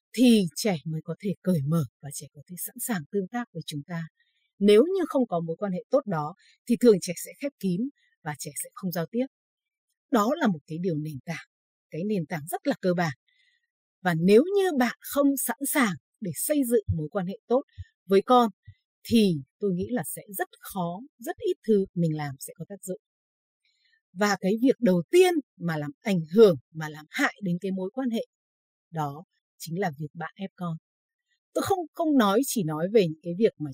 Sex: female